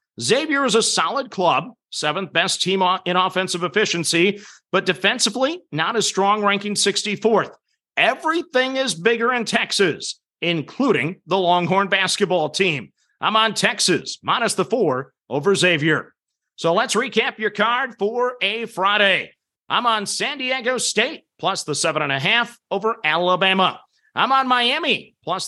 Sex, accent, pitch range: male, American, 175-235 Hz